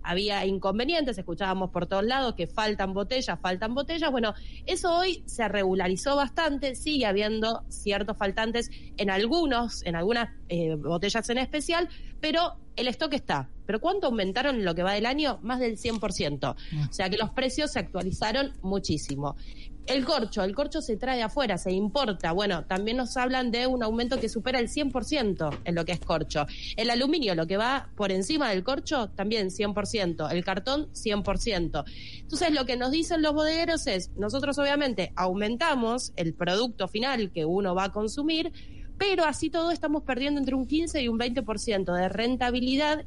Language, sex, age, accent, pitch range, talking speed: Spanish, female, 20-39, Argentinian, 190-275 Hz, 175 wpm